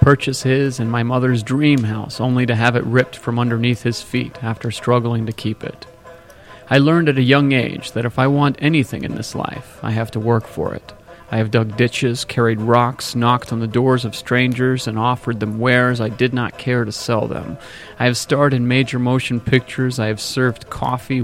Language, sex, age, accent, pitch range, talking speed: English, male, 40-59, American, 115-130 Hz, 210 wpm